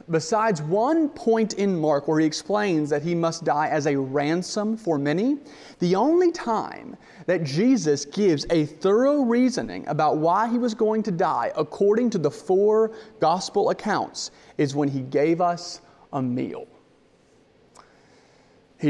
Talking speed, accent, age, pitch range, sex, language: 150 wpm, American, 30-49, 150-215 Hz, male, English